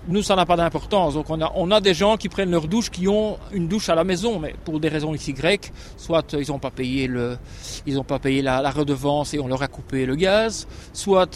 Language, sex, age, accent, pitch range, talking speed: French, male, 40-59, French, 145-190 Hz, 260 wpm